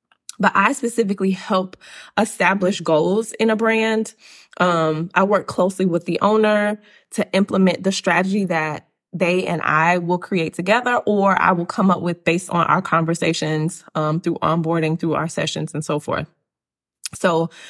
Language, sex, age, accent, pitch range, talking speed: English, female, 20-39, American, 165-195 Hz, 160 wpm